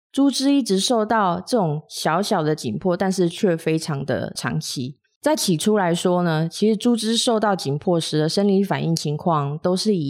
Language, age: Chinese, 20-39